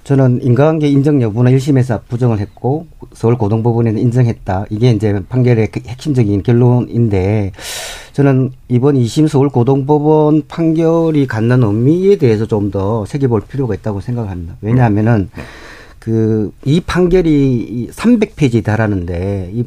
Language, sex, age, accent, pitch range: Korean, male, 40-59, native, 110-140 Hz